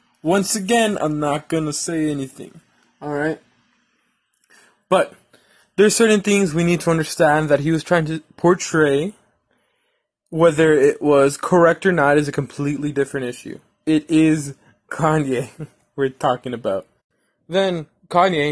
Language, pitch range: English, 135-160 Hz